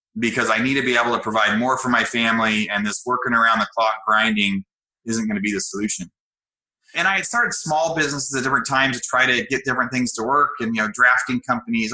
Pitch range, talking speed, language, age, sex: 115-150 Hz, 230 wpm, English, 30-49, male